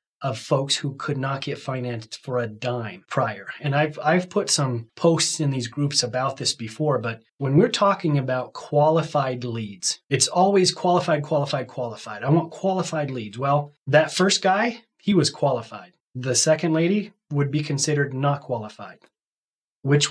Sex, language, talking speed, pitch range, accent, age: male, English, 165 wpm, 130-160 Hz, American, 30-49